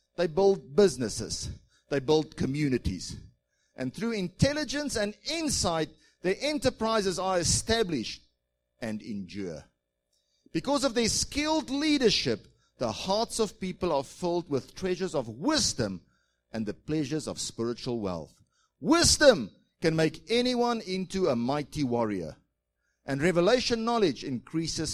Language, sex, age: English, male, 50-69